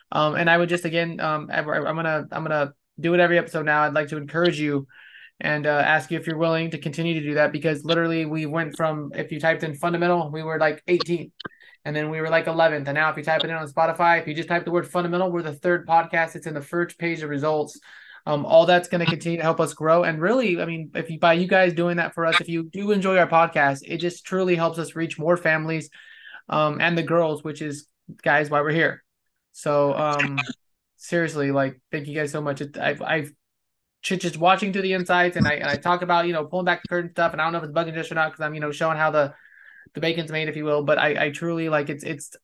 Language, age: English, 20-39